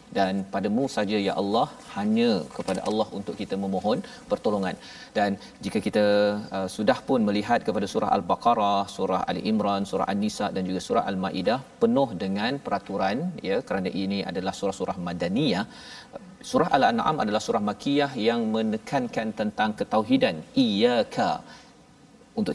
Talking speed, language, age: 135 wpm, Malayalam, 40-59